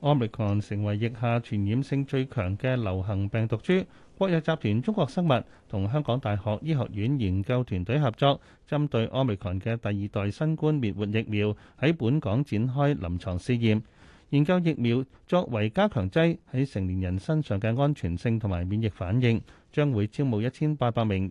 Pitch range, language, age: 105-140 Hz, Chinese, 30-49